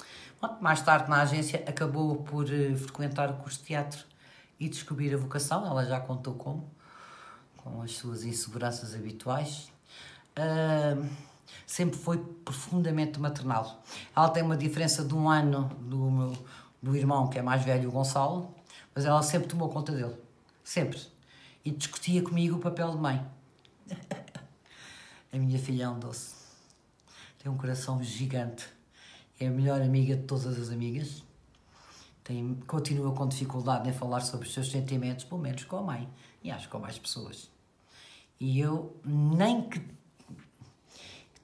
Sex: female